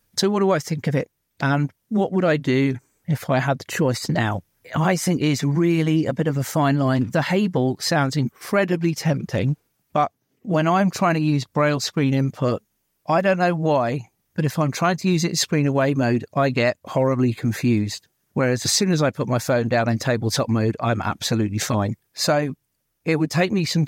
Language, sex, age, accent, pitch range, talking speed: English, male, 50-69, British, 130-165 Hz, 205 wpm